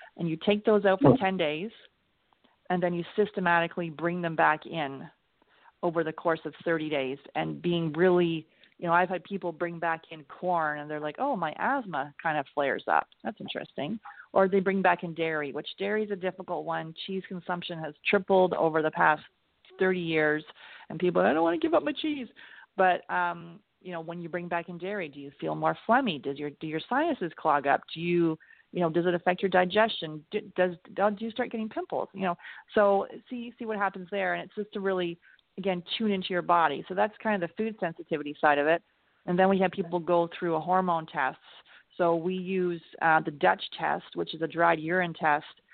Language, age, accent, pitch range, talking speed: English, 30-49, American, 160-190 Hz, 220 wpm